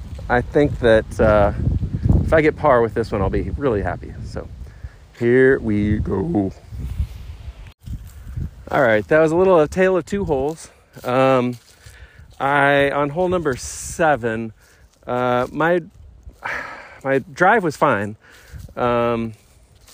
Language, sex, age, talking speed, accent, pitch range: English, male, 40-59, 125 wpm, American, 100-145 Hz